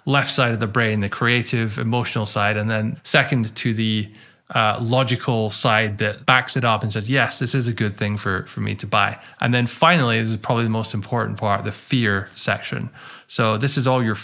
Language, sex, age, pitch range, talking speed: English, male, 20-39, 110-130 Hz, 220 wpm